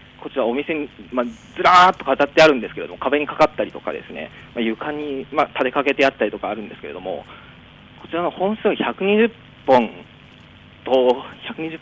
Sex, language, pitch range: male, Japanese, 140-190 Hz